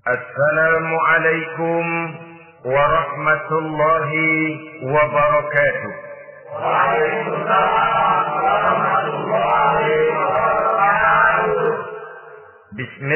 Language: Indonesian